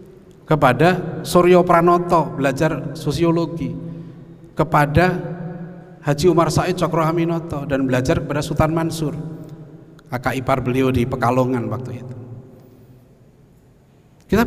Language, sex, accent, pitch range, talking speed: Indonesian, male, native, 120-160 Hz, 95 wpm